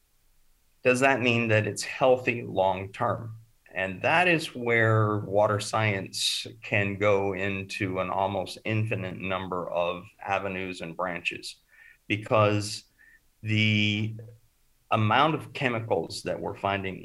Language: English